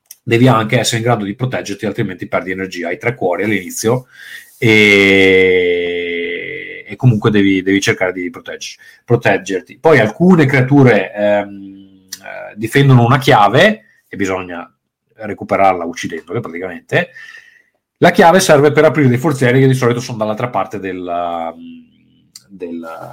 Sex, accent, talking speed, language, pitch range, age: male, native, 130 wpm, Italian, 105-140 Hz, 30-49